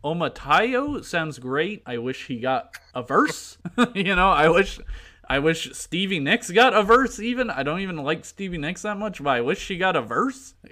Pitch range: 125-175 Hz